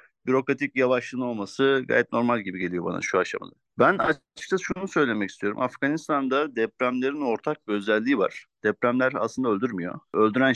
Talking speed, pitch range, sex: 140 wpm, 105-130 Hz, male